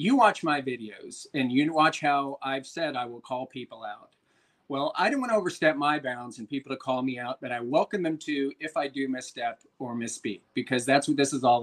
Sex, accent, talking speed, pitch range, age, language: male, American, 245 wpm, 120-150 Hz, 40-59, English